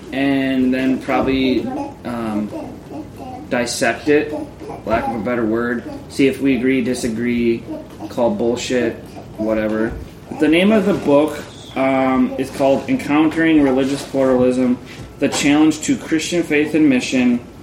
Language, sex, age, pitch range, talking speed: English, male, 20-39, 120-145 Hz, 125 wpm